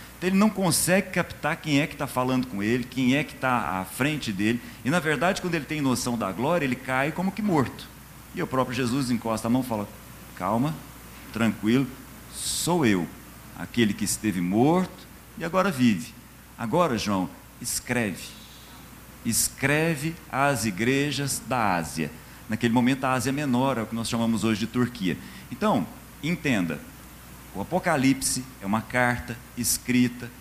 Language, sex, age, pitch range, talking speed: Portuguese, male, 50-69, 110-150 Hz, 160 wpm